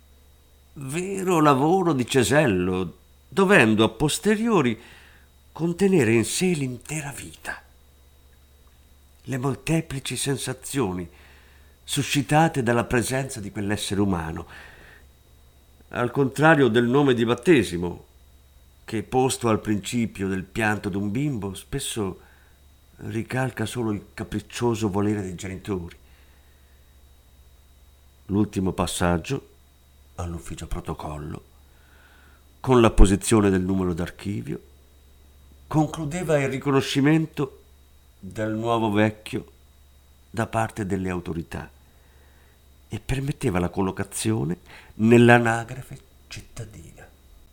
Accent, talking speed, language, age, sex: native, 90 wpm, Italian, 50-69, male